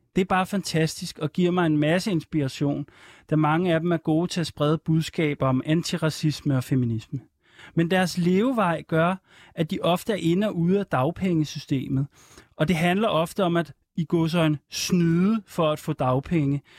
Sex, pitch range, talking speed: male, 150-180 Hz, 180 wpm